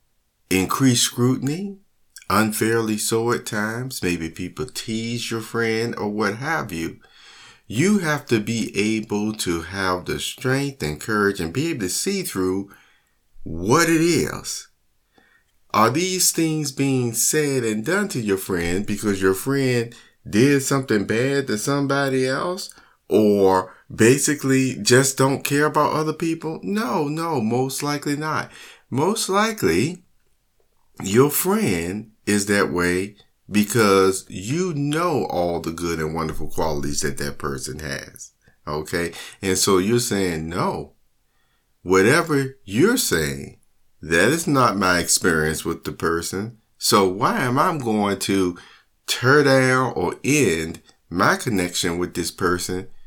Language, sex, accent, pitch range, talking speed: English, male, American, 95-140 Hz, 135 wpm